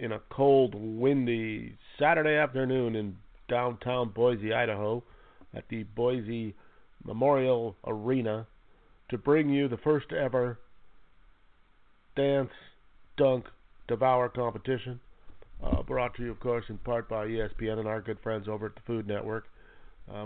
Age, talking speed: 40-59, 135 wpm